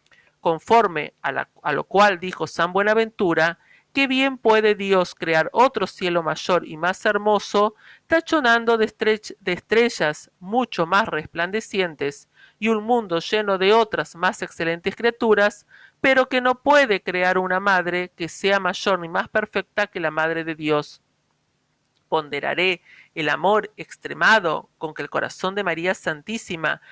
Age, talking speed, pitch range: 50-69, 145 wpm, 165-225 Hz